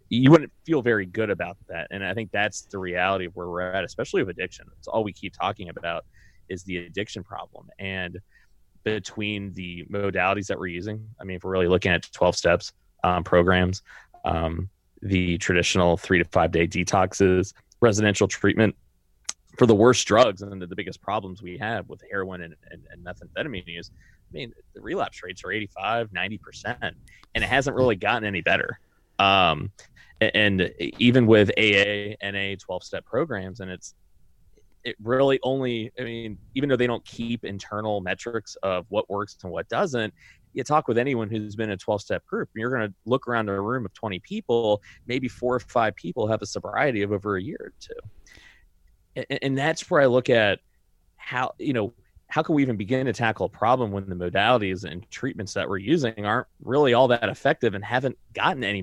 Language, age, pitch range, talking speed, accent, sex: English, 20-39, 90-115 Hz, 195 wpm, American, male